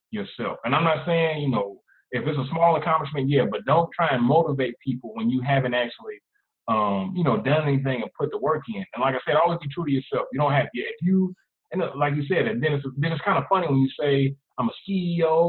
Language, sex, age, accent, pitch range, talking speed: English, male, 20-39, American, 135-165 Hz, 250 wpm